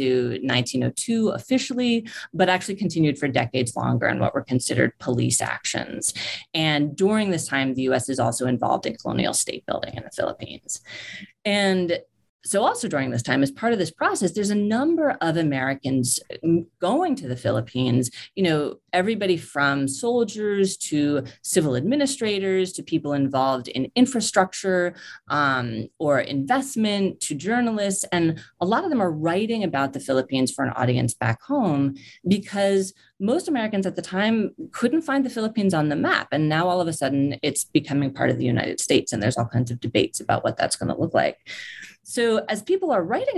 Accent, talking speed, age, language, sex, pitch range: American, 175 wpm, 30-49, English, female, 135-210 Hz